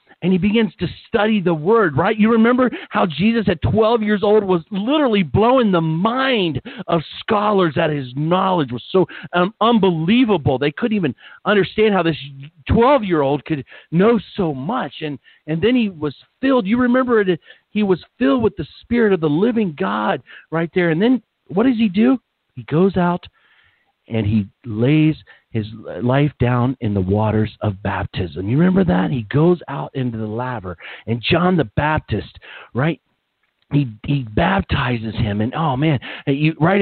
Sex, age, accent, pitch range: male, 50-69, American, 145-210 Hz